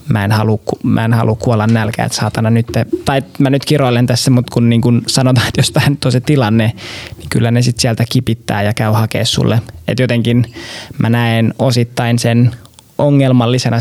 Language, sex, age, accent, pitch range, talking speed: Finnish, male, 20-39, native, 110-125 Hz, 195 wpm